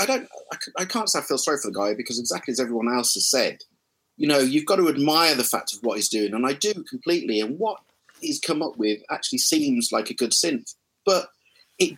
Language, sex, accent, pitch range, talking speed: English, male, British, 120-190 Hz, 240 wpm